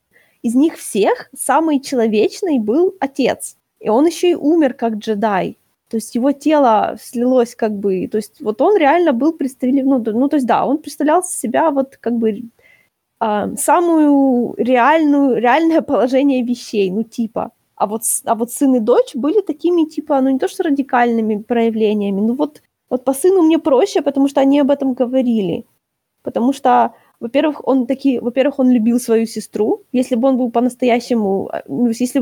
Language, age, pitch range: Ukrainian, 20-39, 225-280 Hz